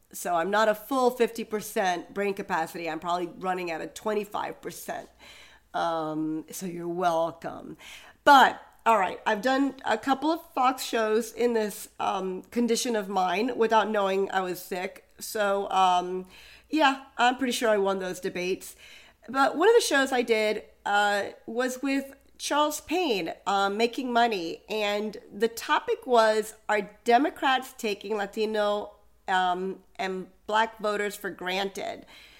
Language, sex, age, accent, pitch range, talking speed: English, female, 40-59, American, 195-255 Hz, 145 wpm